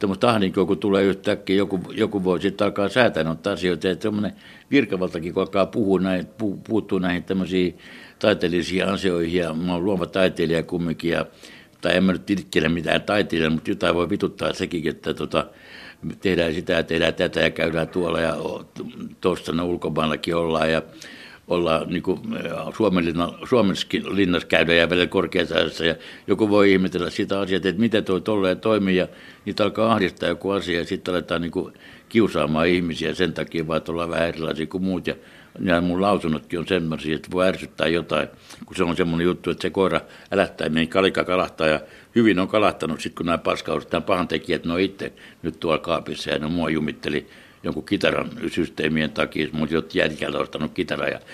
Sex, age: male, 60-79